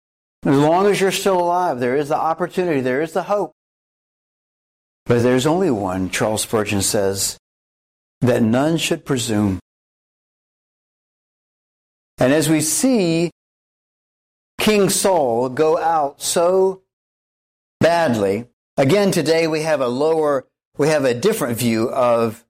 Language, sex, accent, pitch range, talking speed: English, male, American, 110-140 Hz, 125 wpm